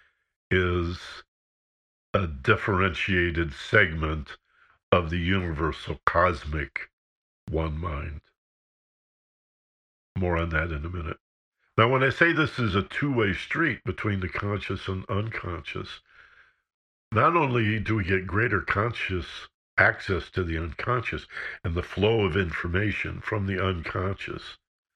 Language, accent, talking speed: English, American, 120 wpm